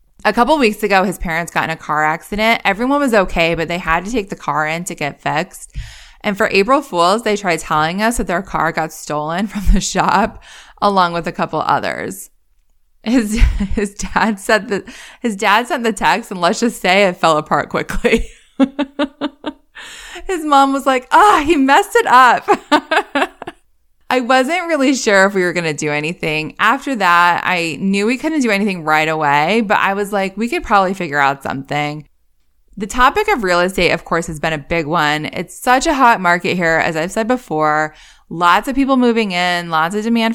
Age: 20-39